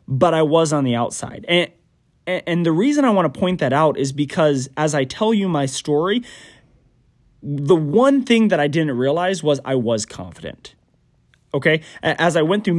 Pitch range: 125-175 Hz